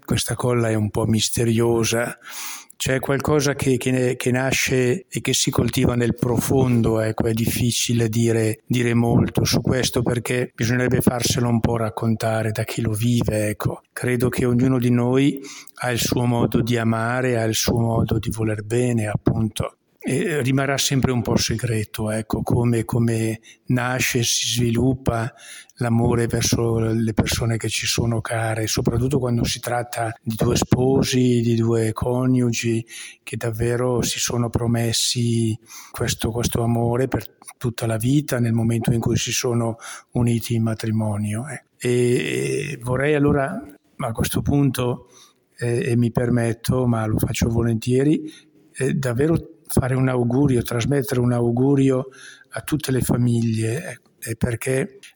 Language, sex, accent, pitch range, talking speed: Italian, male, native, 115-130 Hz, 145 wpm